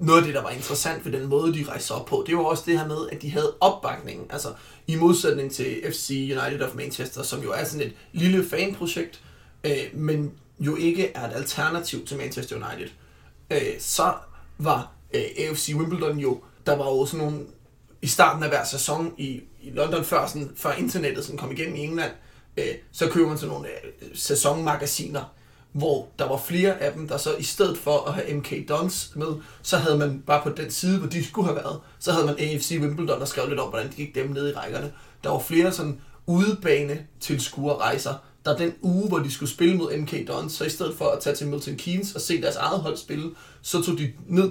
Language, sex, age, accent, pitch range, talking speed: Danish, male, 30-49, native, 140-165 Hz, 220 wpm